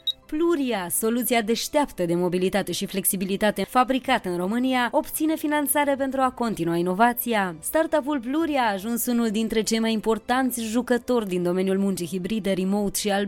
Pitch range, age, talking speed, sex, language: 205-260 Hz, 20-39, 155 wpm, female, Romanian